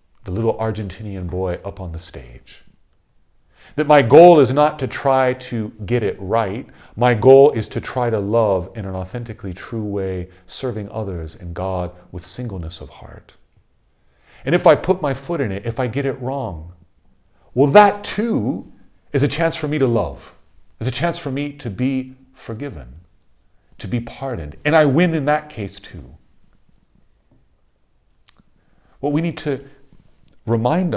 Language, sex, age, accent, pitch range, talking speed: English, male, 40-59, American, 90-130 Hz, 165 wpm